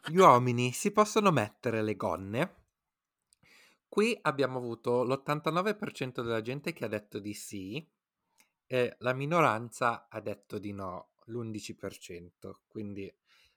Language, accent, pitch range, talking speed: Italian, native, 100-125 Hz, 120 wpm